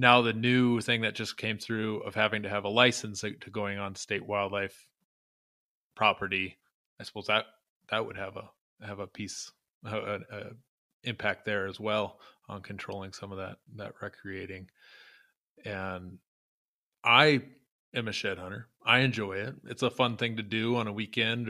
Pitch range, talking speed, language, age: 105-120 Hz, 170 wpm, English, 20-39